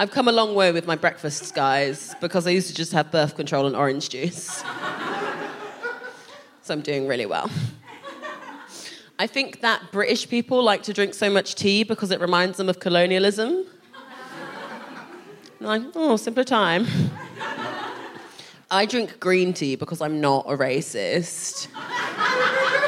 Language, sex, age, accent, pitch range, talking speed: English, female, 20-39, British, 155-210 Hz, 145 wpm